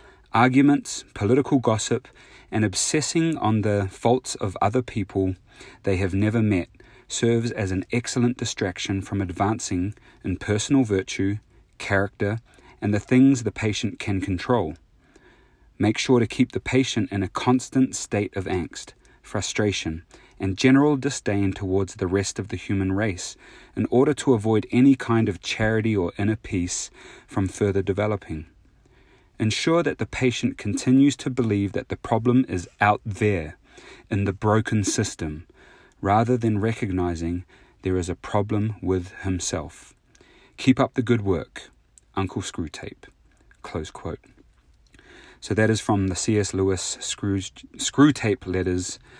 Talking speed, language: 140 wpm, English